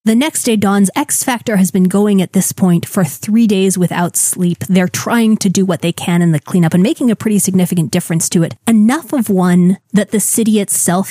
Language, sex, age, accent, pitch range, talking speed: English, female, 20-39, American, 175-205 Hz, 225 wpm